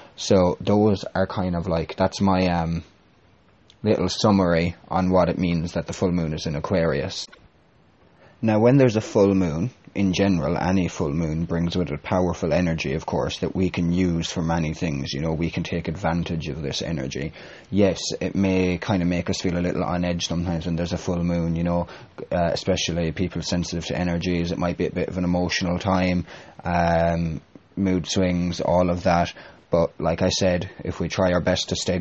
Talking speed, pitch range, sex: 200 wpm, 85-95 Hz, male